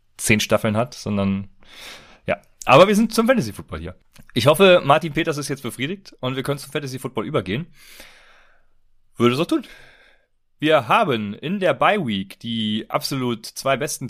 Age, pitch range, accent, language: 30-49, 105-150 Hz, German, German